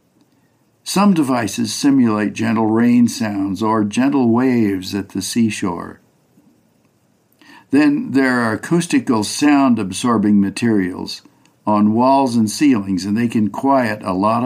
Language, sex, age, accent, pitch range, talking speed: English, male, 60-79, American, 105-135 Hz, 115 wpm